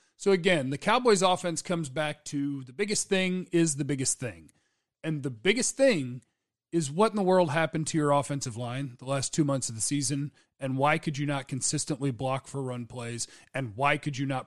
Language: English